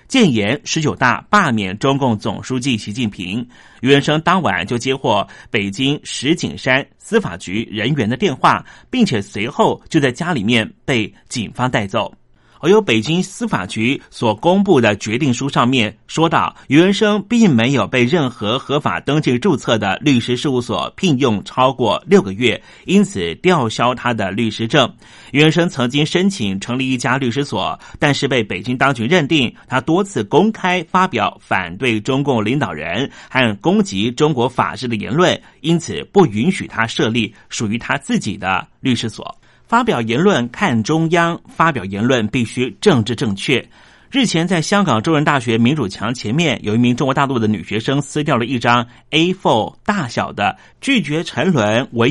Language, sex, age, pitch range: Chinese, male, 30-49, 115-160 Hz